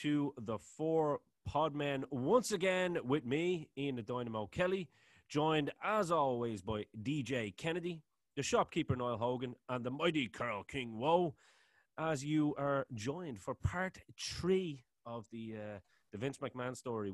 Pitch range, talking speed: 105-140 Hz, 155 wpm